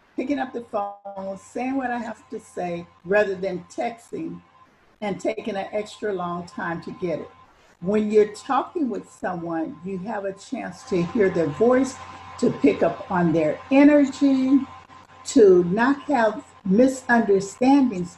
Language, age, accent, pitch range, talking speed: English, 50-69, American, 185-255 Hz, 150 wpm